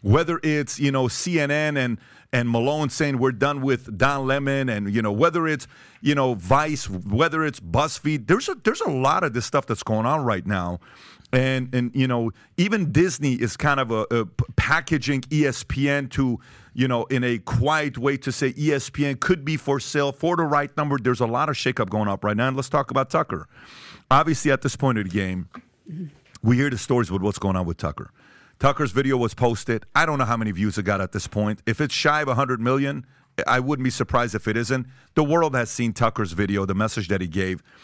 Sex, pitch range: male, 110-145 Hz